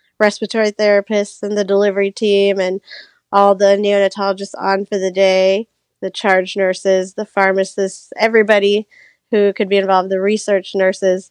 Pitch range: 190-205 Hz